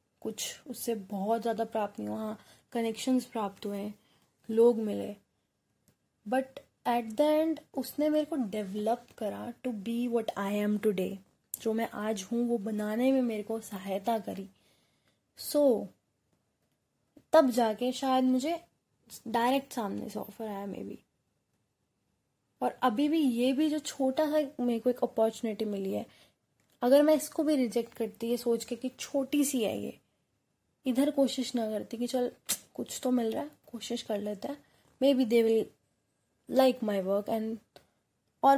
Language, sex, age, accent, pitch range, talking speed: Hindi, female, 20-39, native, 215-265 Hz, 155 wpm